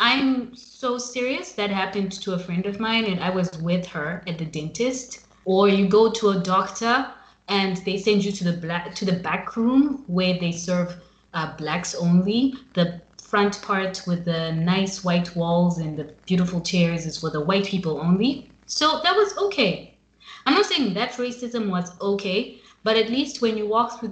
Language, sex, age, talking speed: English, female, 20-39, 190 wpm